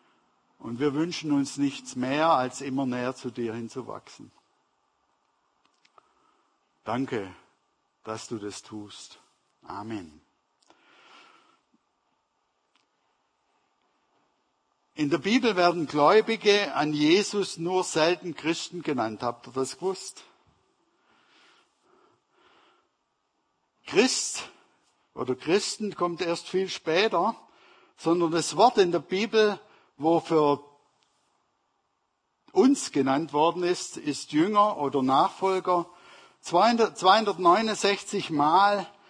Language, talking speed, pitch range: German, 85 wpm, 150-210 Hz